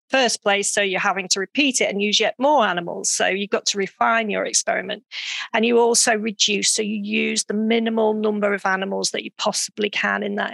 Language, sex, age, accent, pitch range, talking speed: English, female, 40-59, British, 195-220 Hz, 215 wpm